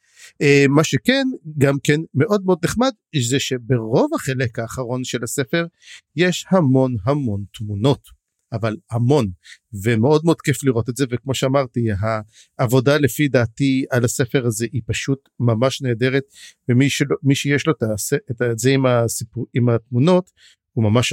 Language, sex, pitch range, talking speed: English, male, 125-170 Hz, 140 wpm